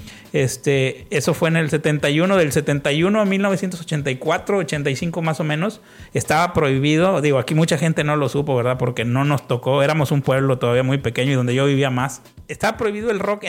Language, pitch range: Spanish, 135-165 Hz